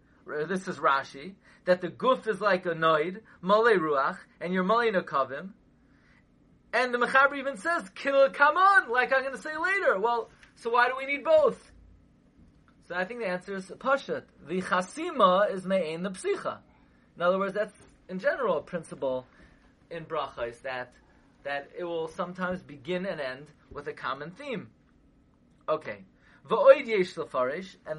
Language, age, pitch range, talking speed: English, 30-49, 165-220 Hz, 160 wpm